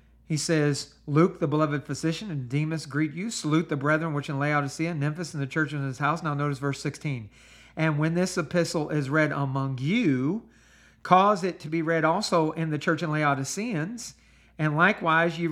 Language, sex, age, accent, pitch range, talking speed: English, male, 50-69, American, 140-170 Hz, 190 wpm